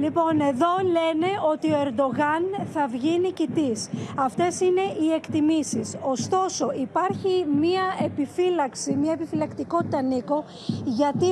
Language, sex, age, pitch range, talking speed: Greek, female, 20-39, 280-345 Hz, 110 wpm